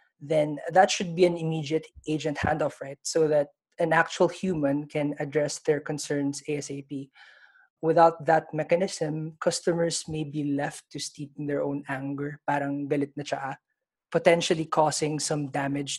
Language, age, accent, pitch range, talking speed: English, 20-39, Filipino, 145-165 Hz, 145 wpm